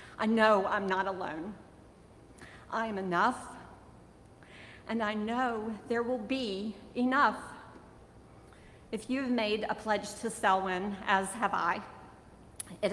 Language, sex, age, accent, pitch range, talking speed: English, female, 50-69, American, 185-215 Hz, 125 wpm